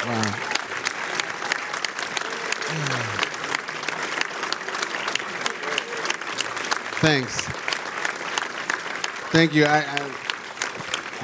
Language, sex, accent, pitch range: English, male, American, 140-160 Hz